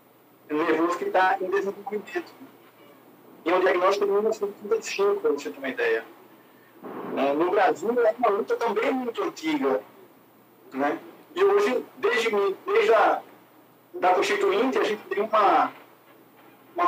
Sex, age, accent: male, 50-69, Brazilian